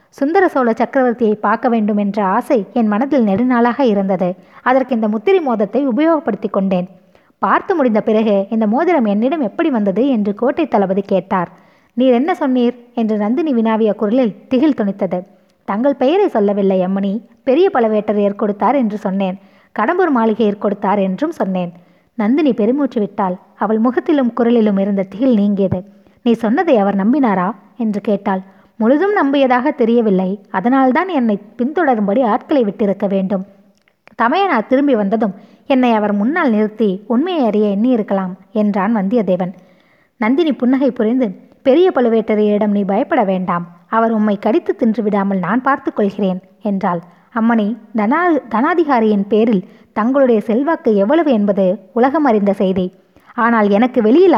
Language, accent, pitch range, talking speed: Tamil, native, 200-255 Hz, 130 wpm